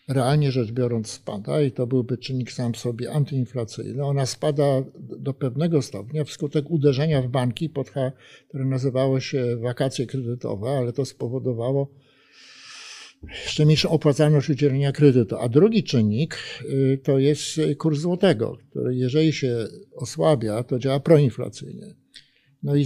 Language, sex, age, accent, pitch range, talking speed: Polish, male, 50-69, native, 125-150 Hz, 135 wpm